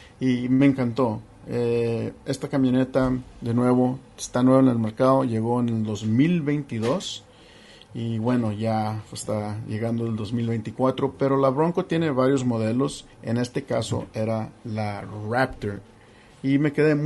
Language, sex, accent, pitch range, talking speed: English, male, Mexican, 110-135 Hz, 135 wpm